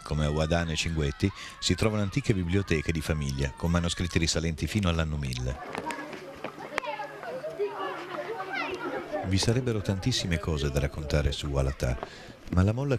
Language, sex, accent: Italian, male, native